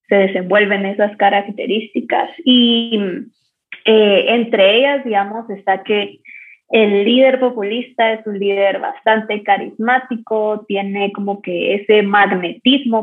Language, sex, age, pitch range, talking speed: Spanish, female, 20-39, 195-230 Hz, 110 wpm